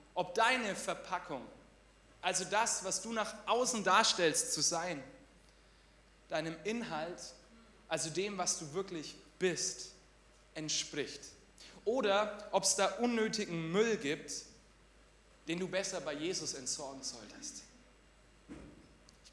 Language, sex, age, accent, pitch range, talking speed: German, male, 30-49, German, 160-205 Hz, 110 wpm